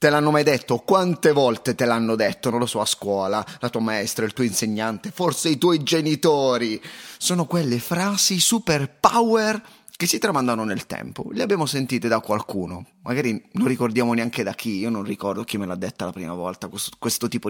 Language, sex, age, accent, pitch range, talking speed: Italian, male, 30-49, native, 115-175 Hz, 200 wpm